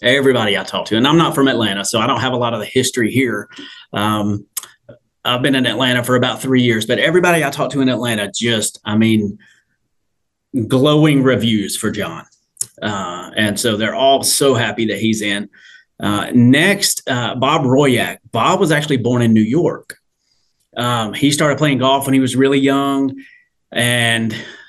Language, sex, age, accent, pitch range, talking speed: English, male, 30-49, American, 115-140 Hz, 180 wpm